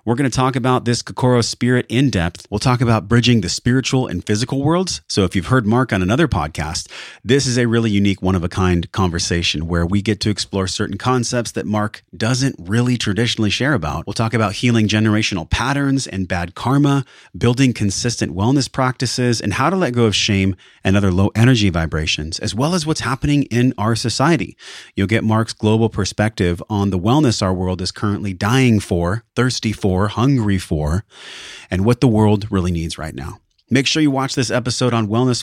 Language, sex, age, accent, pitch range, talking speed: English, male, 30-49, American, 95-125 Hz, 195 wpm